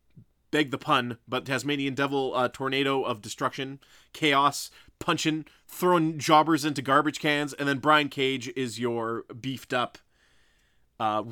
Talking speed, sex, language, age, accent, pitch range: 135 wpm, male, English, 20-39, American, 125-170 Hz